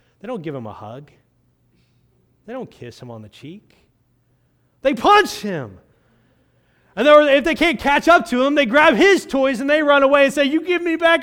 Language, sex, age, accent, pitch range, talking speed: English, male, 30-49, American, 130-205 Hz, 205 wpm